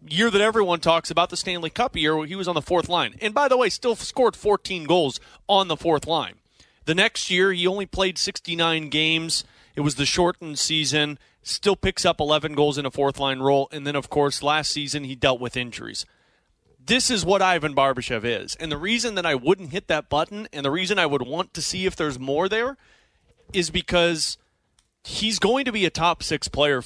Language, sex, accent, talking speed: English, male, American, 220 wpm